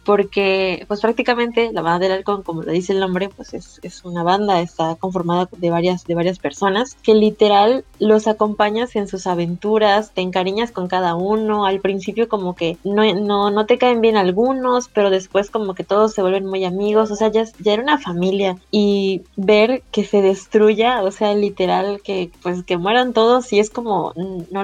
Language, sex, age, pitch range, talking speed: Spanish, female, 20-39, 190-220 Hz, 195 wpm